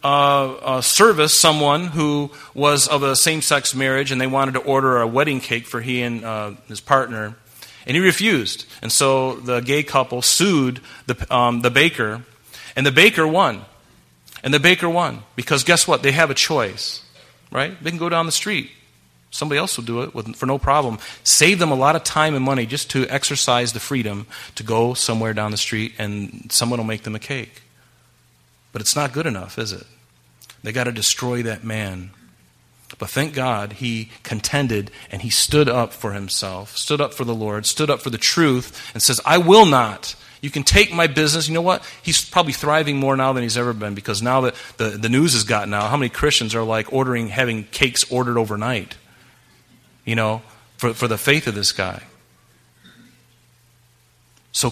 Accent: American